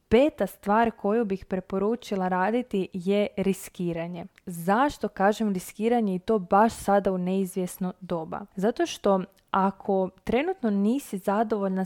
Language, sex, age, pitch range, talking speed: Croatian, female, 20-39, 190-225 Hz, 120 wpm